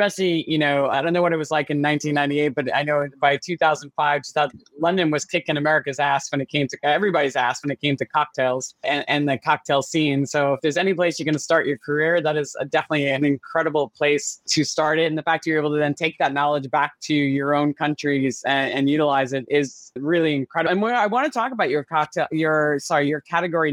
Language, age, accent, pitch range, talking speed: English, 20-39, American, 145-170 Hz, 240 wpm